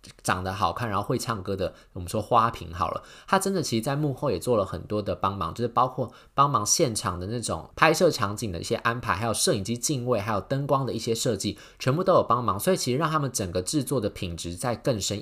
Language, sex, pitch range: Chinese, male, 95-125 Hz